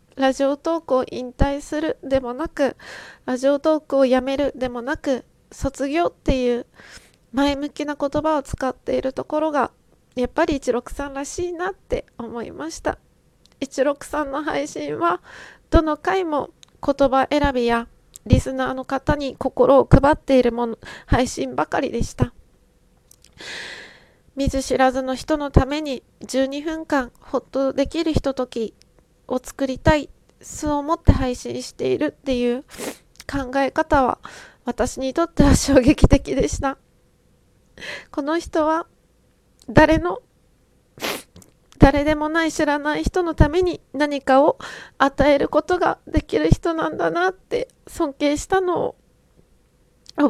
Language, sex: Japanese, female